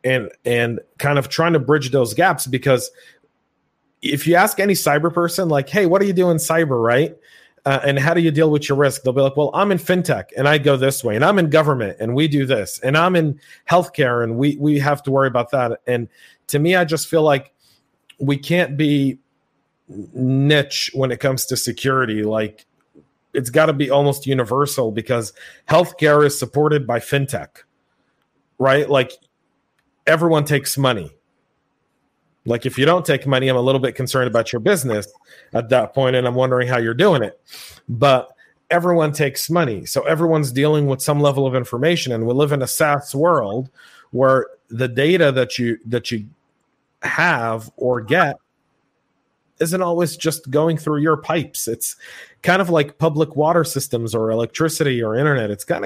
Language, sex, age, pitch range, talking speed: English, male, 40-59, 125-155 Hz, 185 wpm